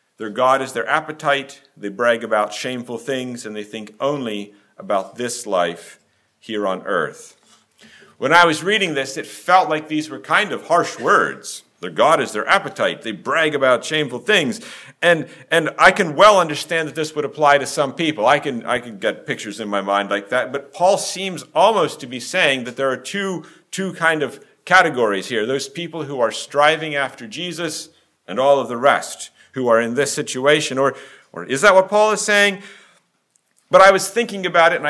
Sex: male